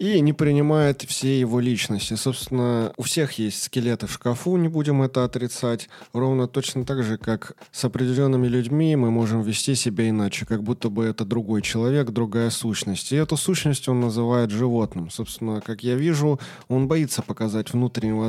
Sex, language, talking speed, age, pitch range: male, Russian, 170 wpm, 20-39, 105-145 Hz